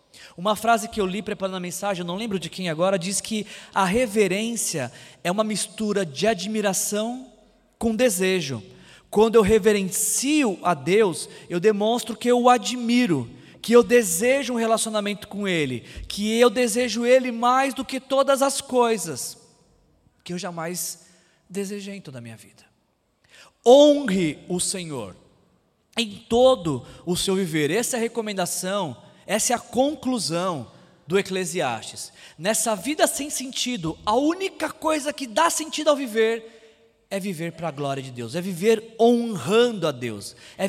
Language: Portuguese